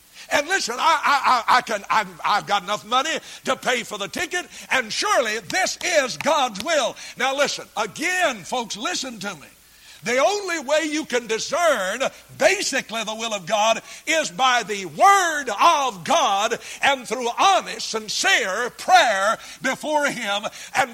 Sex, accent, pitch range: male, American, 170-270 Hz